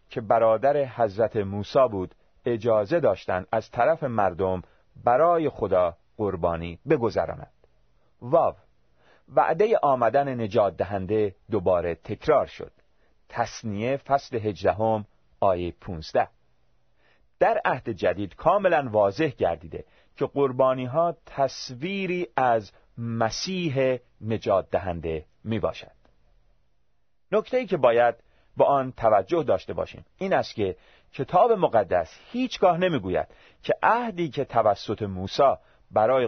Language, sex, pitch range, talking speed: Persian, male, 90-140 Hz, 105 wpm